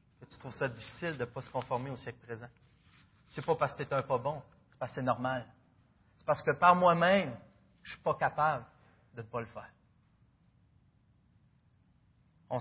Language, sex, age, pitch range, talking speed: French, male, 40-59, 120-165 Hz, 195 wpm